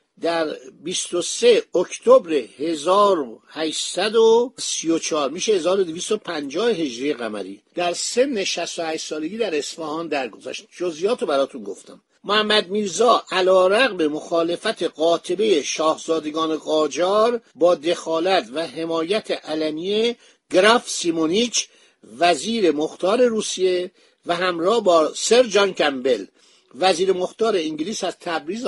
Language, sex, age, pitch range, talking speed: Persian, male, 50-69, 155-215 Hz, 100 wpm